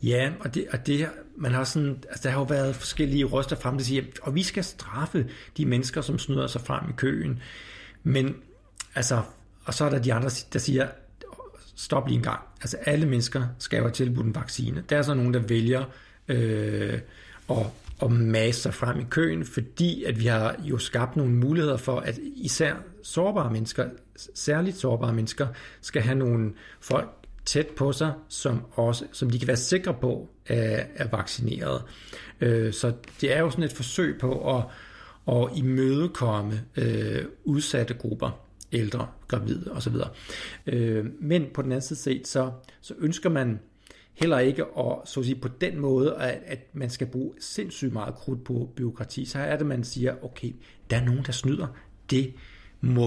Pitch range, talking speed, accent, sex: 120-140 Hz, 175 wpm, native, male